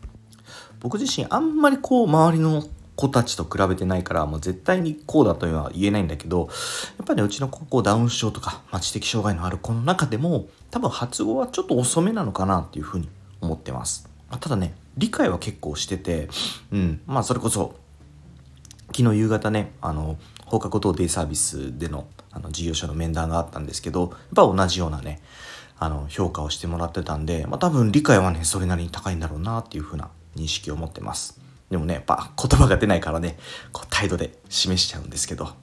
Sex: male